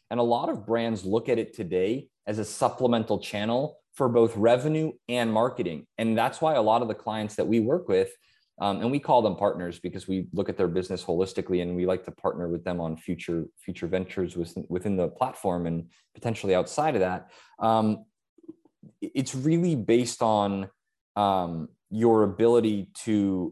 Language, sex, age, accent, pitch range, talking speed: English, male, 20-39, American, 90-115 Hz, 180 wpm